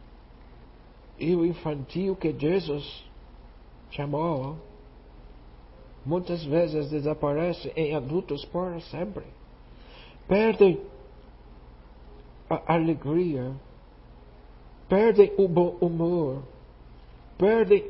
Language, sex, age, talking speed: Portuguese, male, 60-79, 70 wpm